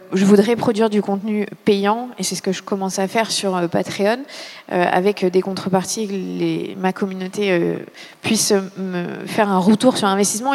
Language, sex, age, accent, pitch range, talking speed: French, female, 20-39, French, 190-230 Hz, 175 wpm